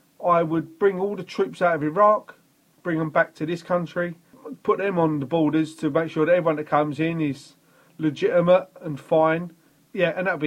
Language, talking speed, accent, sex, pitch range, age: English, 205 wpm, British, male, 150-185 Hz, 30-49